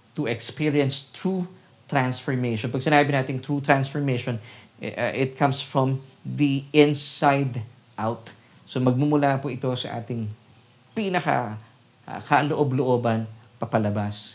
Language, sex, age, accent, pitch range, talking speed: Filipino, male, 20-39, native, 115-140 Hz, 105 wpm